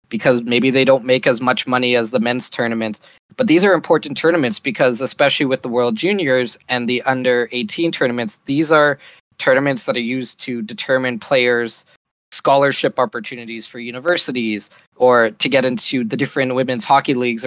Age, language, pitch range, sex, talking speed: 20-39, English, 120-145 Hz, male, 170 wpm